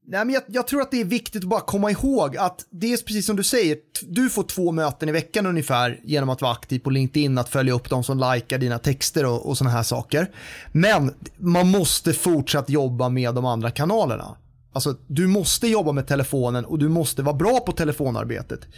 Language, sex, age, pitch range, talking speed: Swedish, male, 30-49, 135-175 Hz, 215 wpm